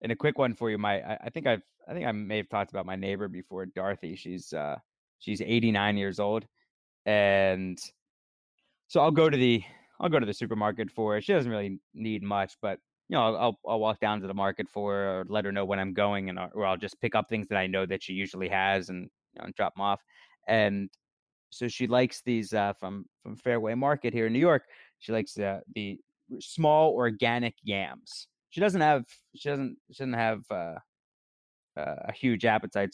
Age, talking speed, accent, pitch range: 20-39, 215 wpm, American, 100-120 Hz